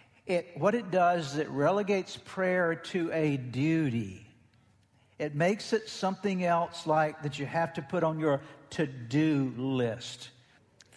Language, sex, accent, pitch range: English, male, American, 145-195 Hz